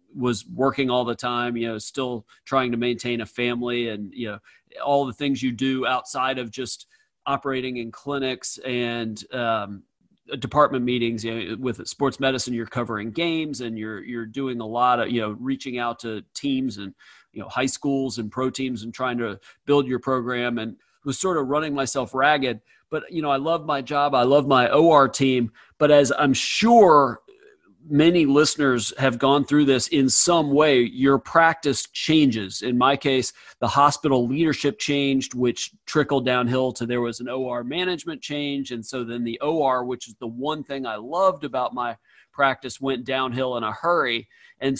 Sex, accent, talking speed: male, American, 190 wpm